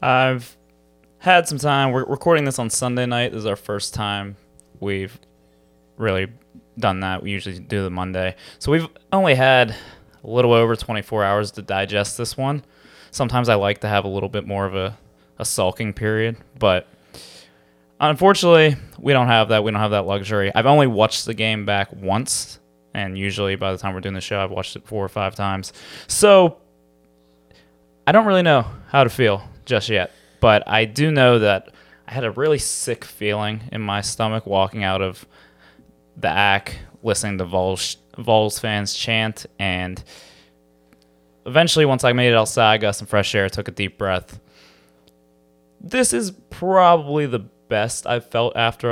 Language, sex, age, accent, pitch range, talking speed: English, male, 20-39, American, 95-120 Hz, 175 wpm